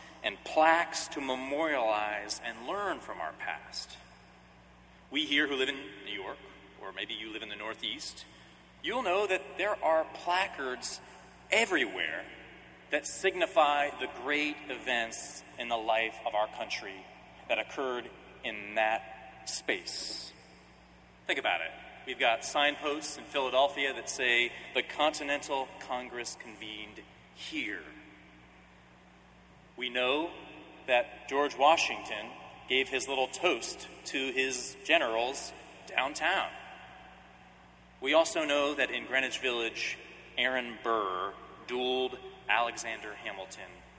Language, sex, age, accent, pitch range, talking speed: English, male, 30-49, American, 95-145 Hz, 115 wpm